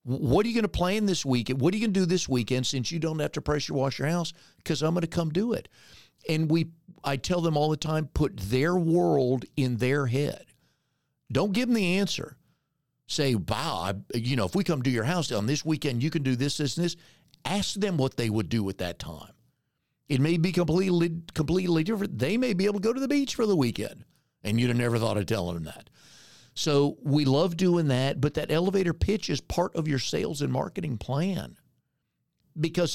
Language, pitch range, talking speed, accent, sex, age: English, 130-170 Hz, 230 wpm, American, male, 50-69